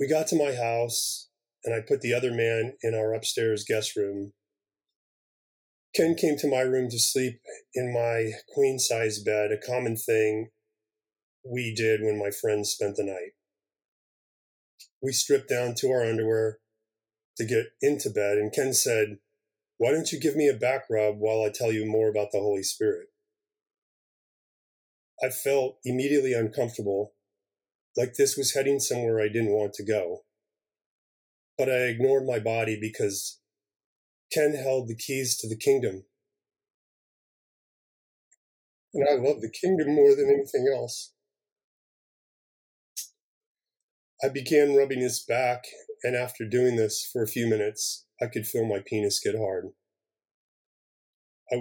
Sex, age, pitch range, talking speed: male, 30-49, 110-145 Hz, 145 wpm